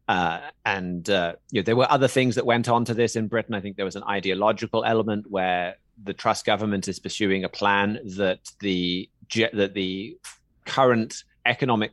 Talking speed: 185 wpm